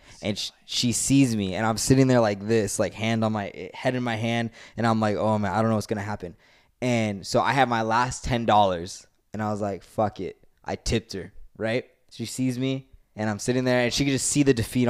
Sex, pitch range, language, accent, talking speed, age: male, 110-140 Hz, English, American, 255 wpm, 20-39